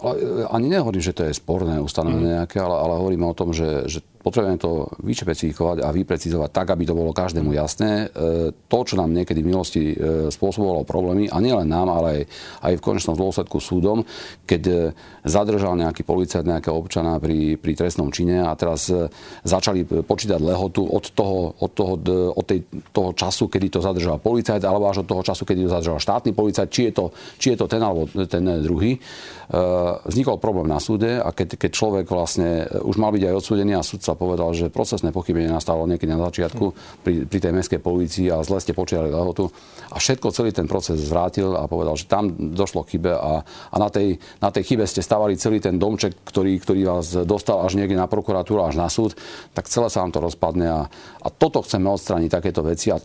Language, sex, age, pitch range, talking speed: Slovak, male, 40-59, 85-100 Hz, 200 wpm